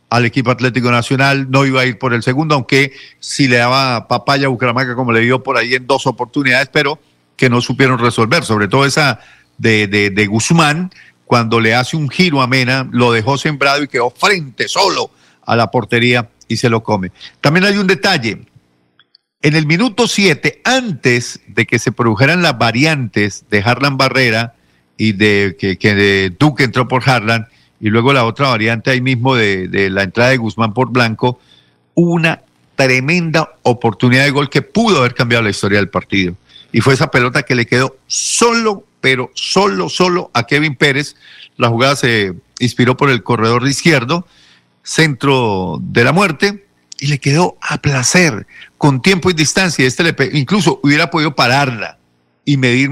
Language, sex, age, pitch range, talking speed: Spanish, male, 50-69, 115-150 Hz, 180 wpm